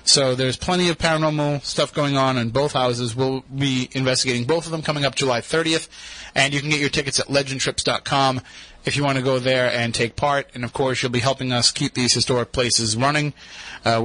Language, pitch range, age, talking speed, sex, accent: English, 120-150 Hz, 30-49, 220 wpm, male, American